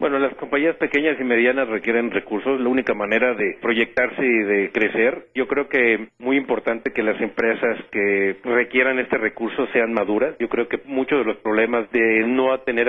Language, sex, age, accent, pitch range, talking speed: Spanish, male, 40-59, Mexican, 110-130 Hz, 185 wpm